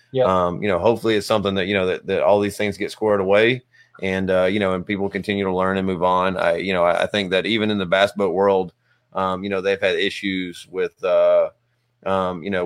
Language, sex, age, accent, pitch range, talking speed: English, male, 30-49, American, 95-105 Hz, 245 wpm